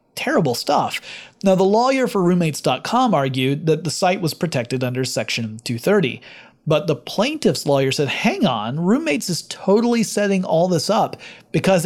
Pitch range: 140-190 Hz